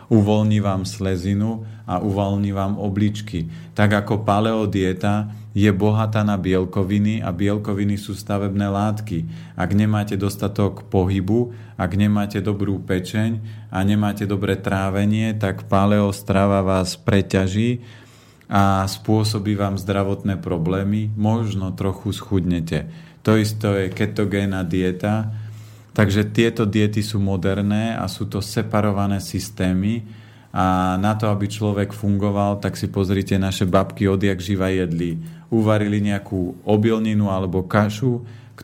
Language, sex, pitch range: Slovak, male, 95-110 Hz